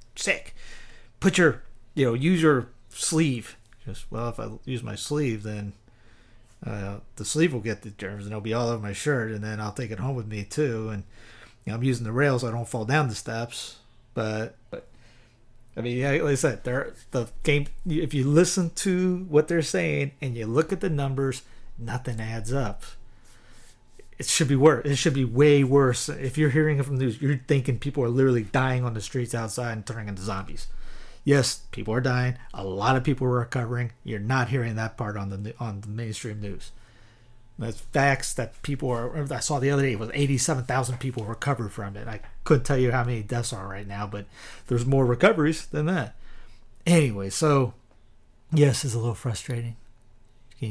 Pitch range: 110-140 Hz